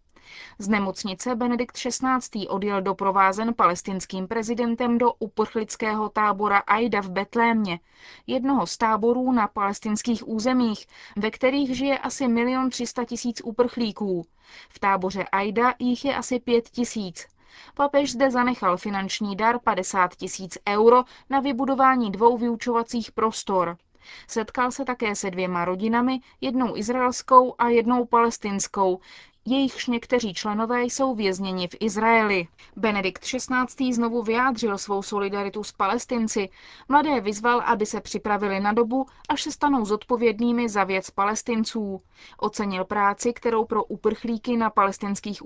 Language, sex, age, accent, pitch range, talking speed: Czech, female, 20-39, native, 200-245 Hz, 125 wpm